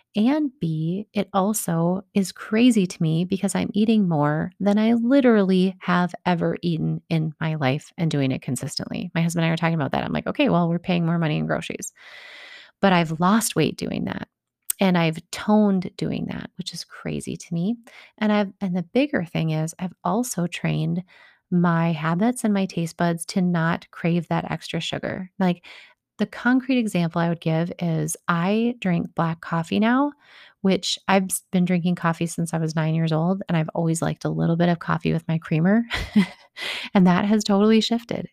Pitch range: 170-205 Hz